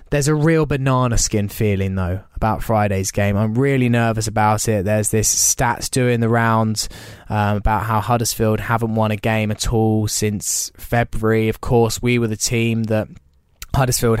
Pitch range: 110-135 Hz